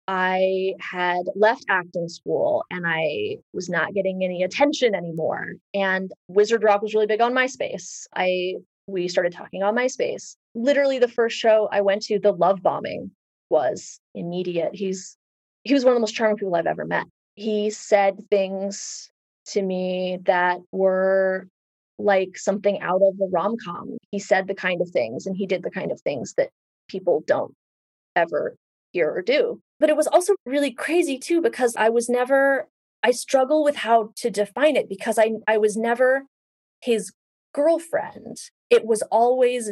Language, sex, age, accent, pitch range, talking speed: English, female, 30-49, American, 190-255 Hz, 170 wpm